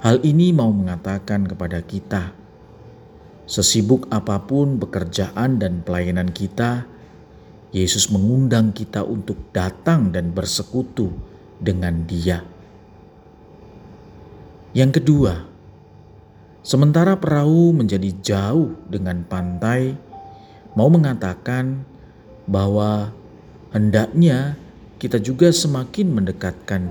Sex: male